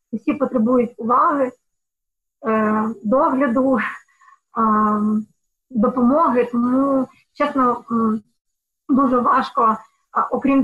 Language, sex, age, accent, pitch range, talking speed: Ukrainian, female, 20-39, native, 235-265 Hz, 55 wpm